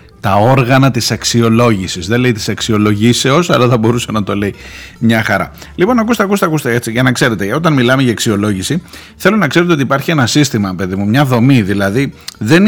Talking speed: 195 wpm